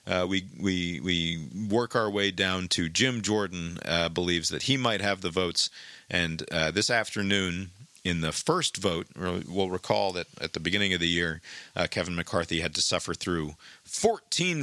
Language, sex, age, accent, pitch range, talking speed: English, male, 40-59, American, 85-100 Hz, 180 wpm